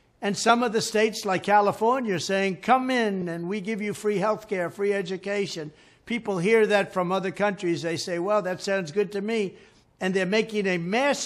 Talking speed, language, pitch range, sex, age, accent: 210 wpm, English, 185-230 Hz, male, 60-79, American